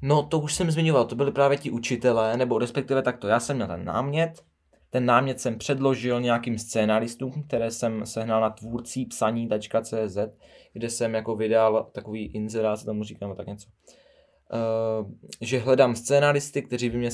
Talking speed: 165 wpm